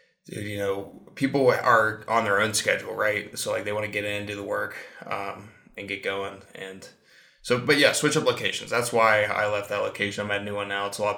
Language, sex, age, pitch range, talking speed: English, male, 20-39, 105-125 Hz, 245 wpm